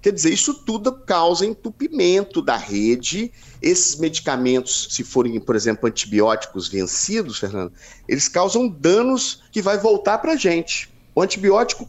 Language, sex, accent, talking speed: Portuguese, male, Brazilian, 140 wpm